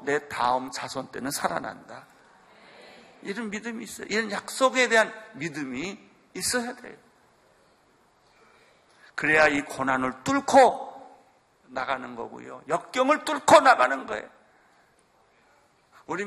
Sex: male